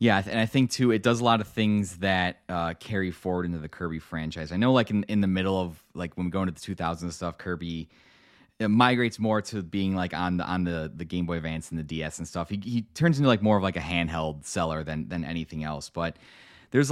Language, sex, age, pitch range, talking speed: English, male, 20-39, 80-100 Hz, 260 wpm